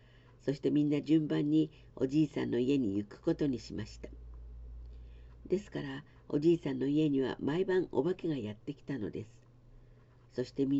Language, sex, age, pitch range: Japanese, female, 50-69, 120-155 Hz